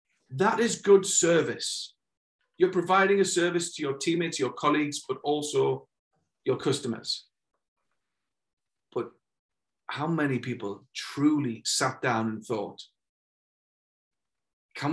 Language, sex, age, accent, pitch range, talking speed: English, male, 40-59, British, 140-205 Hz, 110 wpm